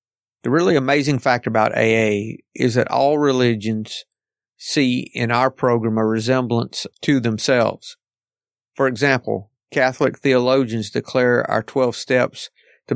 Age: 50-69